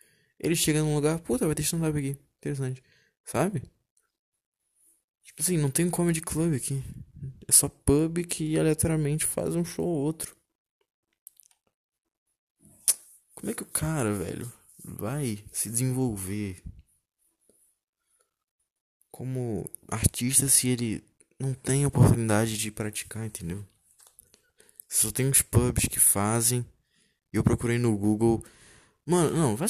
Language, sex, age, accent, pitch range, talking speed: Portuguese, male, 20-39, Brazilian, 110-155 Hz, 125 wpm